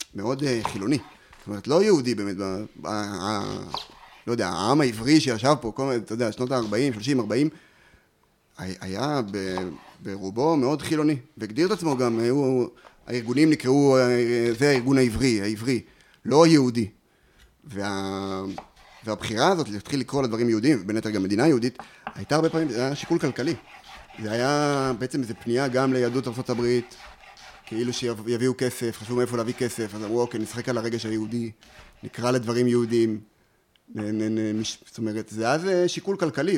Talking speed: 150 wpm